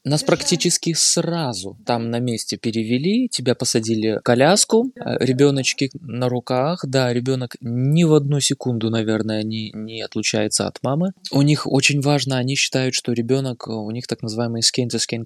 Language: Russian